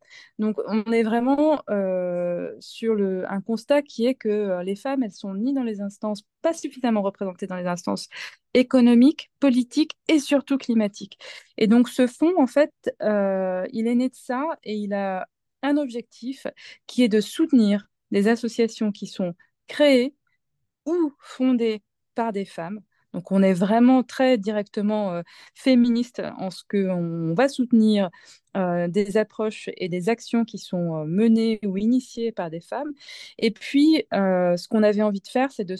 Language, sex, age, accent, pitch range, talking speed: French, female, 20-39, French, 200-255 Hz, 170 wpm